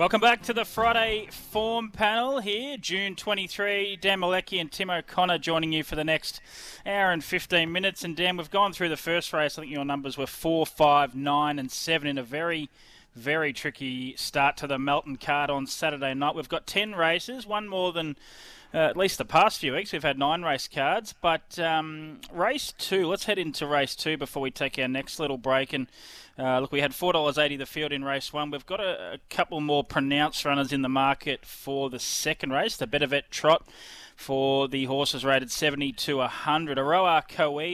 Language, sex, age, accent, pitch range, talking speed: English, male, 20-39, Australian, 135-165 Hz, 205 wpm